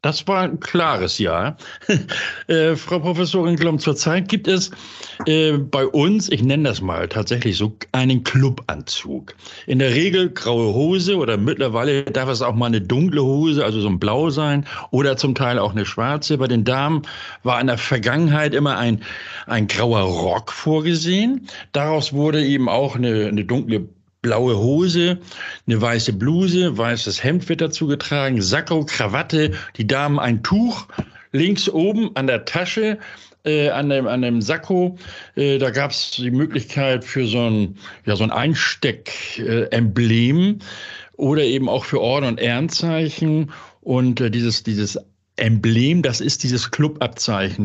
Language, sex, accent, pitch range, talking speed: German, male, German, 115-155 Hz, 160 wpm